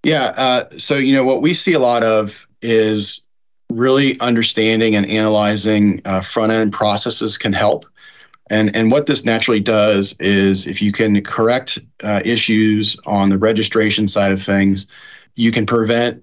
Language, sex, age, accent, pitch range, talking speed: English, male, 30-49, American, 100-115 Hz, 165 wpm